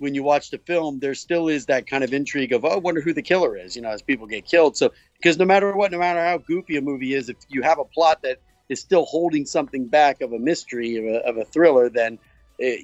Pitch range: 120-170 Hz